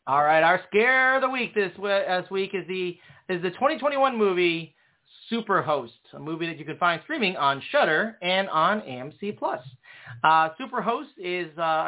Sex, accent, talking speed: male, American, 175 wpm